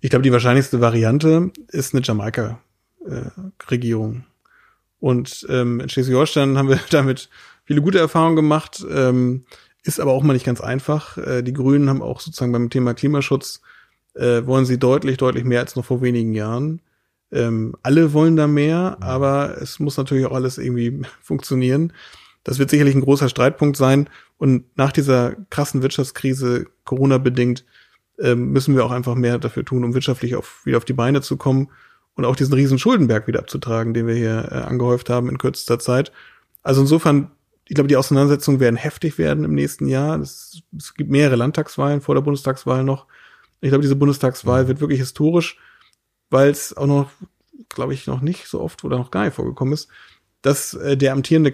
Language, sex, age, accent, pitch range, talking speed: German, male, 30-49, German, 125-145 Hz, 170 wpm